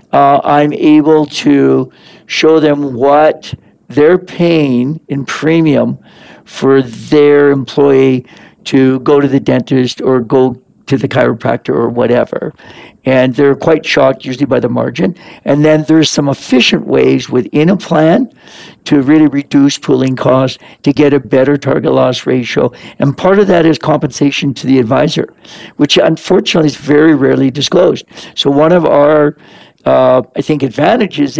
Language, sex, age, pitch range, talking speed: English, male, 60-79, 130-155 Hz, 150 wpm